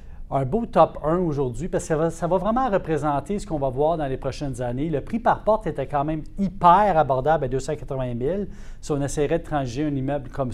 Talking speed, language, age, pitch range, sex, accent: 235 wpm, French, 30-49, 130-160 Hz, male, Canadian